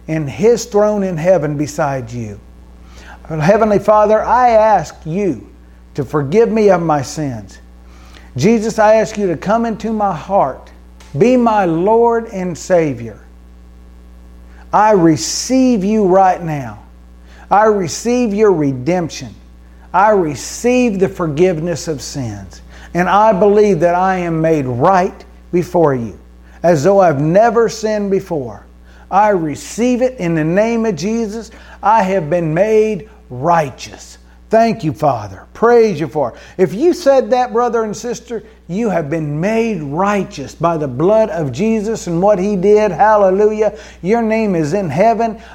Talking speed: 145 wpm